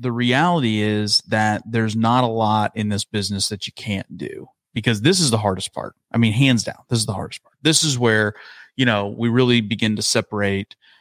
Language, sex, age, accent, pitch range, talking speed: English, male, 30-49, American, 105-125 Hz, 220 wpm